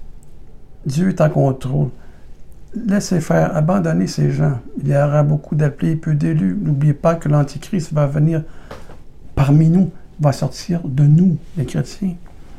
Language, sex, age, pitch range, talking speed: French, male, 60-79, 130-160 Hz, 145 wpm